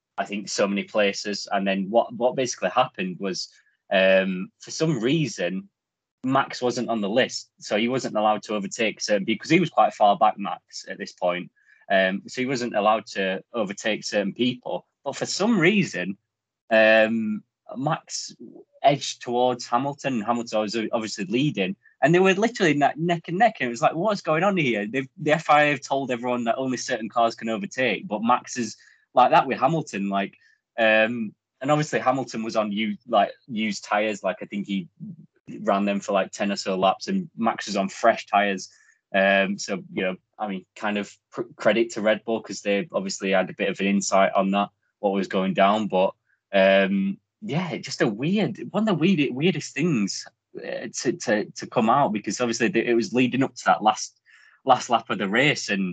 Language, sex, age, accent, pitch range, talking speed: English, male, 20-39, British, 100-130 Hz, 195 wpm